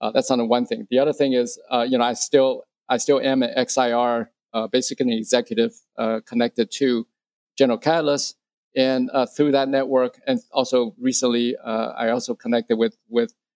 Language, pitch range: English, 120-145 Hz